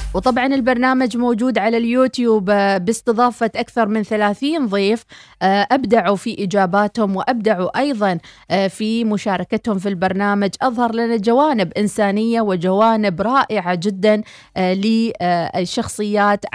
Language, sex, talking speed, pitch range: Arabic, female, 100 wpm, 200-230 Hz